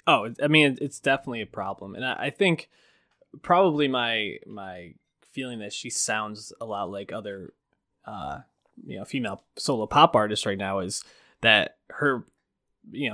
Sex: male